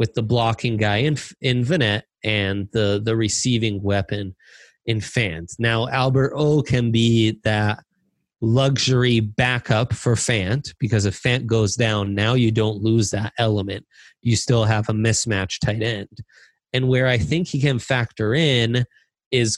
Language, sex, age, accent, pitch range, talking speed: English, male, 30-49, American, 110-130 Hz, 160 wpm